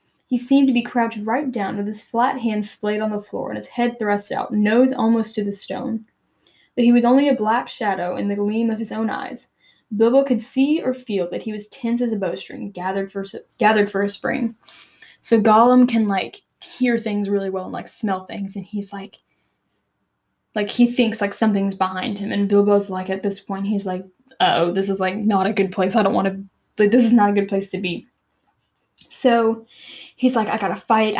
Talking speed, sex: 215 wpm, female